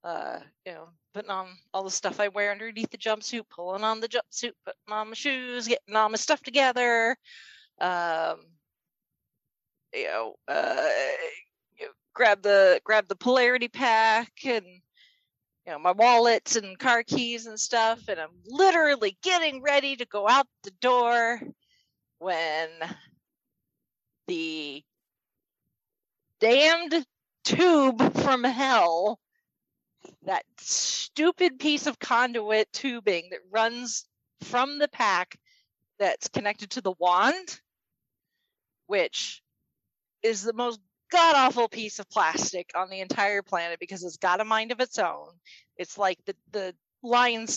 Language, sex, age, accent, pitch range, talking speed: English, female, 40-59, American, 190-270 Hz, 130 wpm